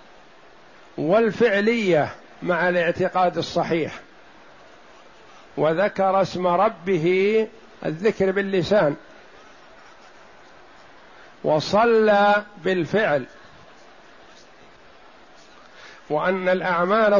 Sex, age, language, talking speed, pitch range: male, 50-69, Arabic, 45 wpm, 180-210 Hz